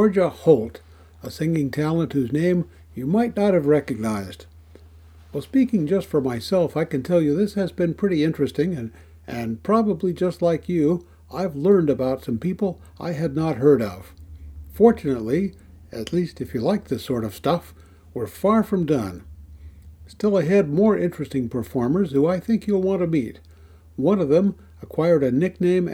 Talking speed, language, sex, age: 170 wpm, English, male, 60-79